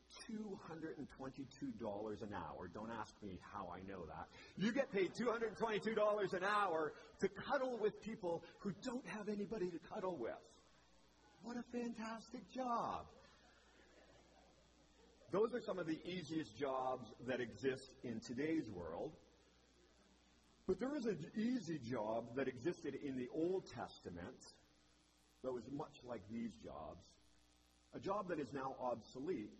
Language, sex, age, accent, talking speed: English, male, 50-69, American, 135 wpm